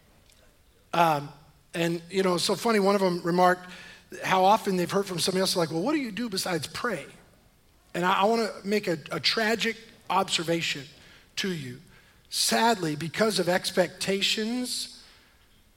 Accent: American